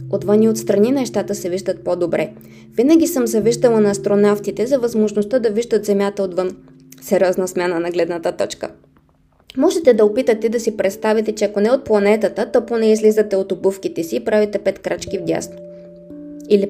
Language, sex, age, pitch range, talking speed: Bulgarian, female, 20-39, 185-230 Hz, 170 wpm